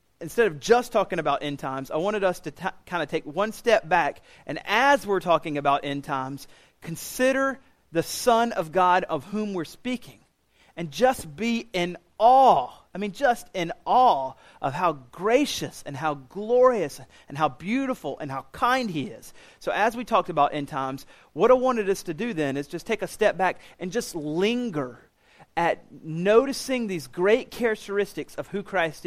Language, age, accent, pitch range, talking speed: English, 40-59, American, 150-230 Hz, 180 wpm